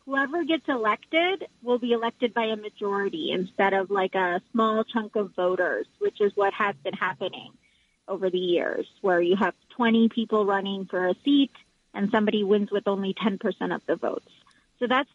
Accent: American